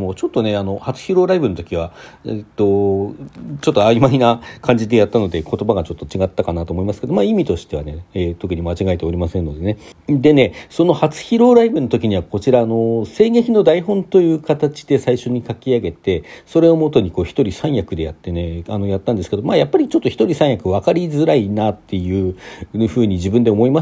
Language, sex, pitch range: Japanese, male, 95-155 Hz